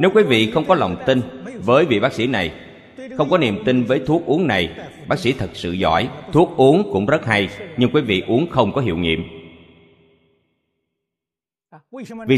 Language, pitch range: Vietnamese, 85-130 Hz